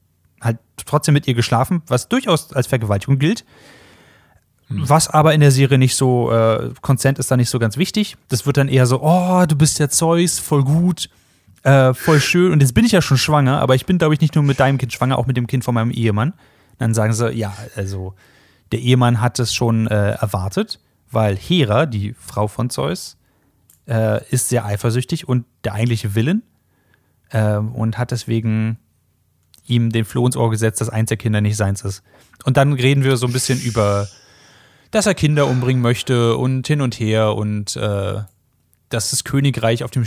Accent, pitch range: German, 115-145 Hz